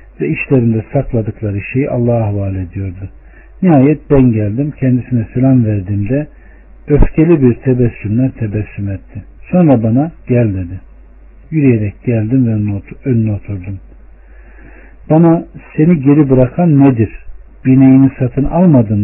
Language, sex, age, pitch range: Turkish, male, 60-79, 110-140 Hz